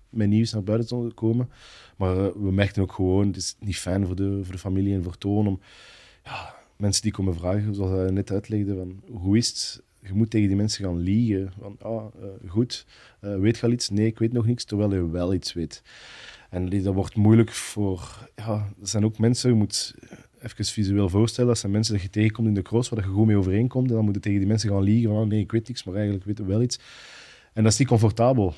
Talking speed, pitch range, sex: 245 wpm, 95-110 Hz, male